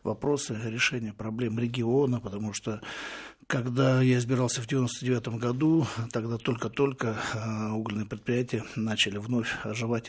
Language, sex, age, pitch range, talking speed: Russian, male, 60-79, 110-125 Hz, 115 wpm